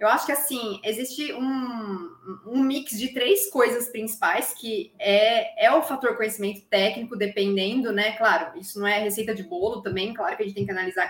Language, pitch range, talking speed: Portuguese, 205-285 Hz, 195 wpm